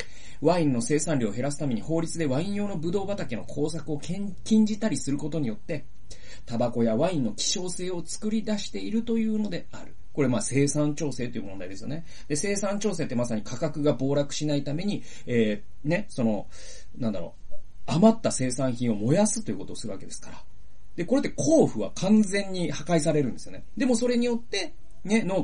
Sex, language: male, Japanese